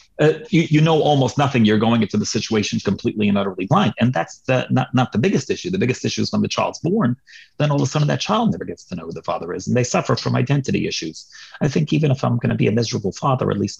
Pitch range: 100-130 Hz